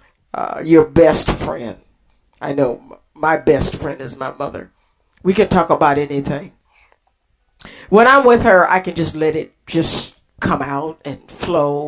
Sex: female